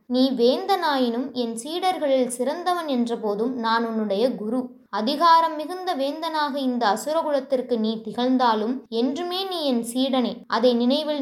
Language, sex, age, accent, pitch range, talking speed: Tamil, female, 20-39, native, 235-315 Hz, 120 wpm